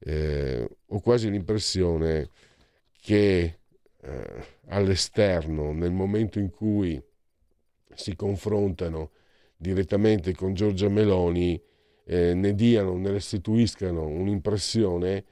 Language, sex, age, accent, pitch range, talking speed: Italian, male, 50-69, native, 75-100 Hz, 85 wpm